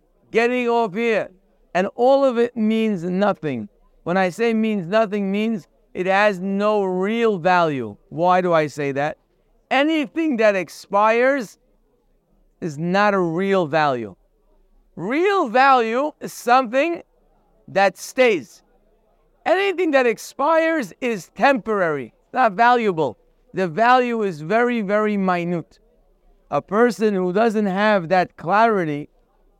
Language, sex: English, male